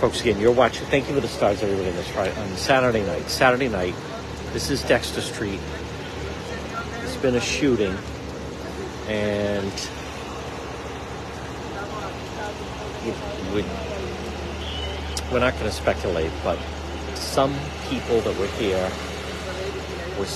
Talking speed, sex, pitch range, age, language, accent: 115 wpm, male, 80-100 Hz, 50-69, English, American